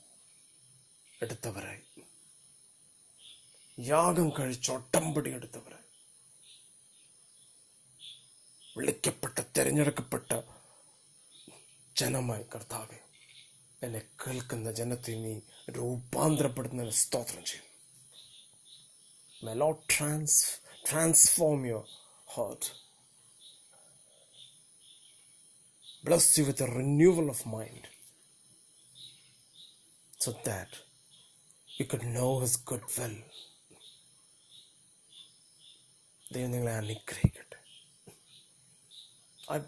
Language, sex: Malayalam, male